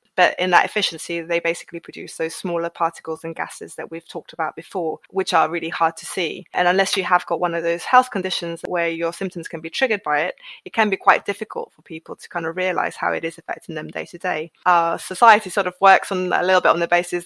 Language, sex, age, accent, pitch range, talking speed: English, female, 20-39, British, 170-195 Hz, 250 wpm